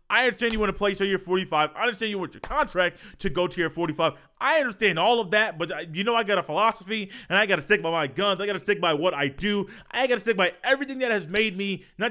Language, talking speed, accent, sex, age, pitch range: English, 290 wpm, American, male, 20-39, 170-220 Hz